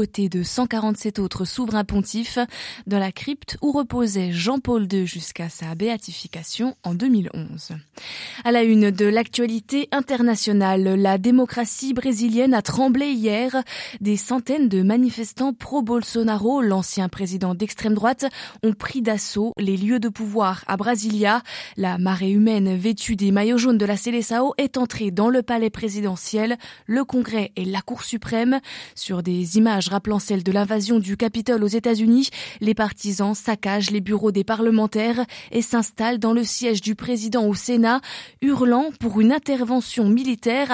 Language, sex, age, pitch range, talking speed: French, female, 20-39, 200-245 Hz, 155 wpm